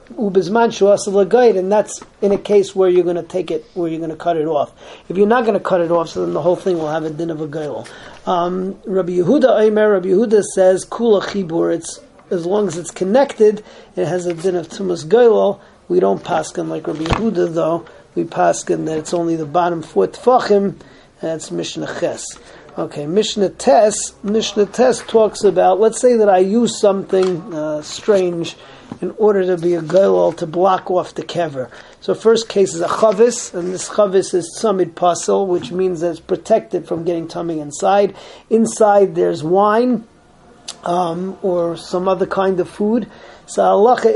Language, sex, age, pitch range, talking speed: English, male, 40-59, 175-215 Hz, 180 wpm